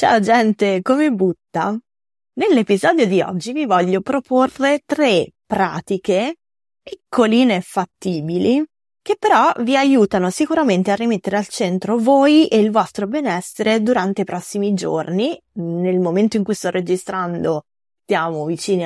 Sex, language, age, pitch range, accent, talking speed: female, Italian, 20-39, 170-220 Hz, native, 130 wpm